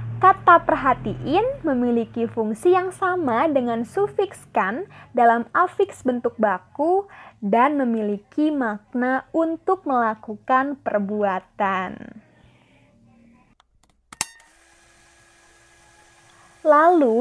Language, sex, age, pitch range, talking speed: Indonesian, female, 20-39, 225-305 Hz, 70 wpm